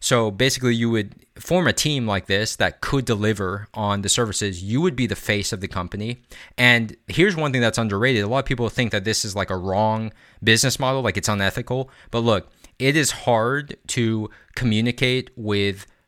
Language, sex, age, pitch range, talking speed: English, male, 20-39, 105-120 Hz, 200 wpm